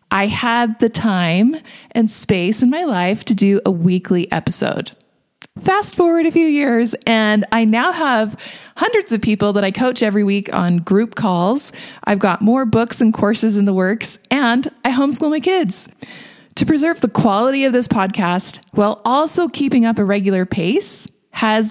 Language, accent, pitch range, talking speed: English, American, 200-260 Hz, 175 wpm